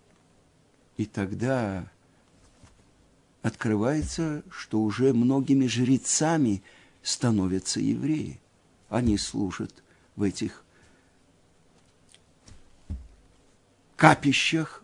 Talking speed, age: 55 wpm, 50-69